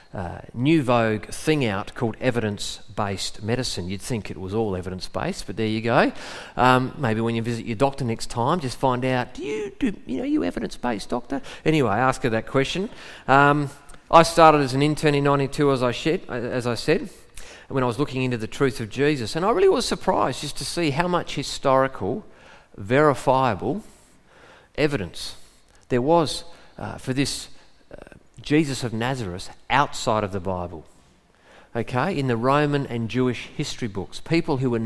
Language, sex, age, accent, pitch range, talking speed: English, male, 40-59, Australian, 115-145 Hz, 180 wpm